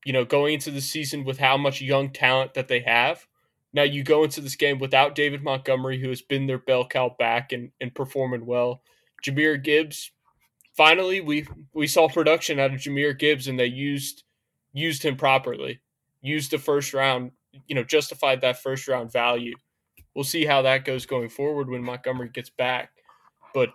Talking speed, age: 185 wpm, 20-39